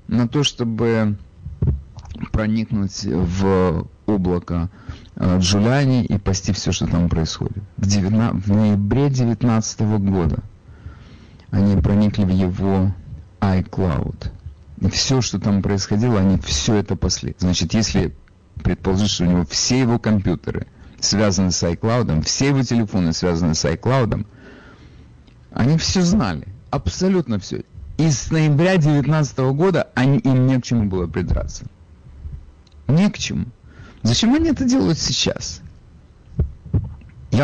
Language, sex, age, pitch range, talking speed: Russian, male, 50-69, 90-125 Hz, 125 wpm